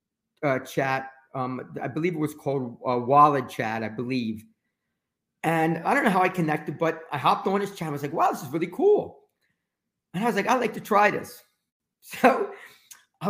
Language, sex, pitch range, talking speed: English, male, 145-220 Hz, 205 wpm